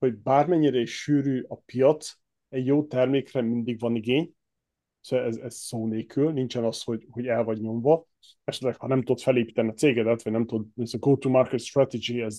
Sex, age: male, 30-49